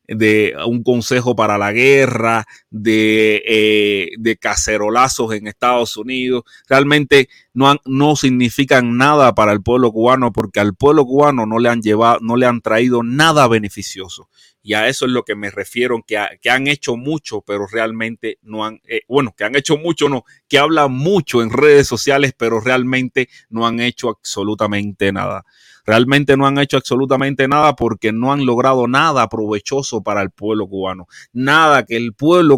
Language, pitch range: Spanish, 105-135 Hz